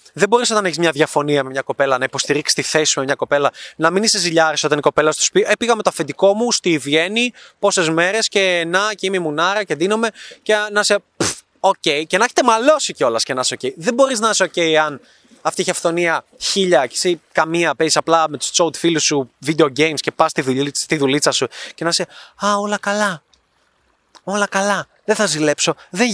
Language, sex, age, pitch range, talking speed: Greek, male, 20-39, 145-190 Hz, 235 wpm